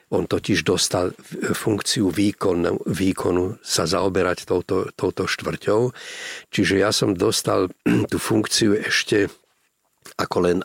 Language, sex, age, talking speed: Slovak, male, 50-69, 115 wpm